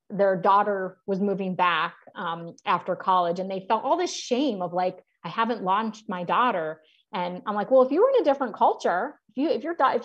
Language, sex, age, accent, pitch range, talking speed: English, female, 30-49, American, 185-255 Hz, 220 wpm